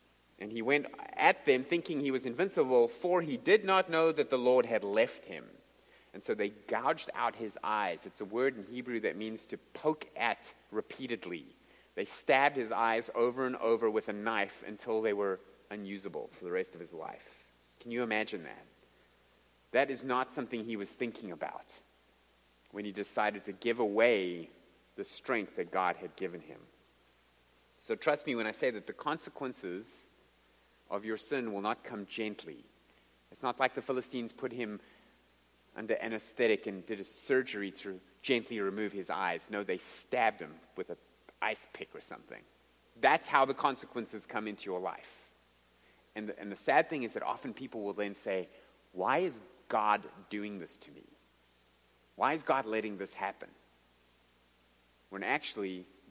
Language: English